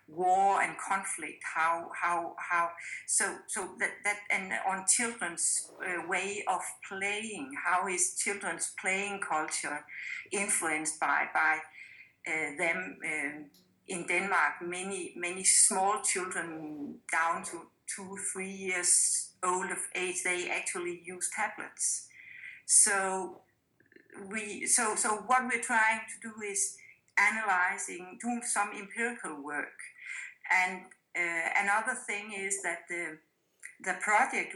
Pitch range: 175-215 Hz